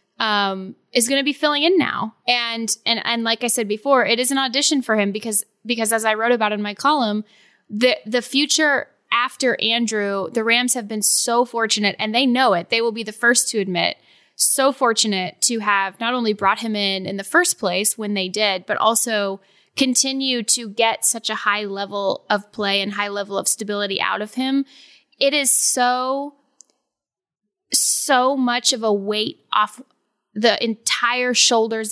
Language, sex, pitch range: English, female, 205-245 Hz